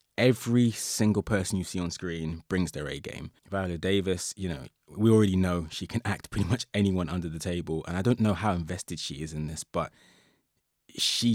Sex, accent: male, British